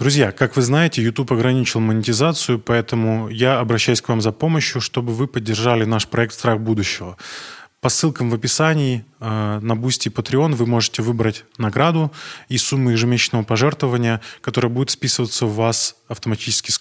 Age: 20-39